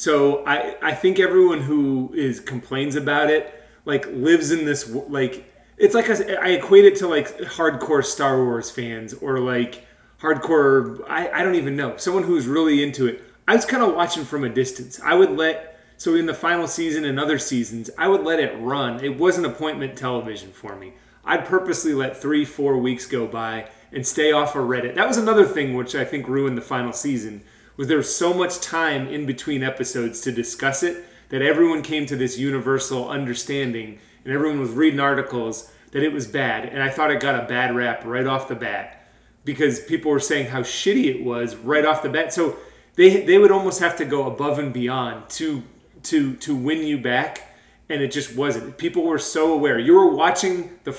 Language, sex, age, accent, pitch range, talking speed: English, male, 30-49, American, 125-160 Hz, 205 wpm